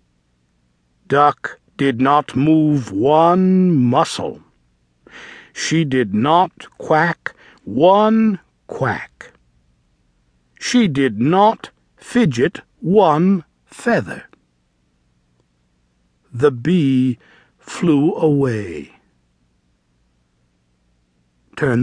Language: English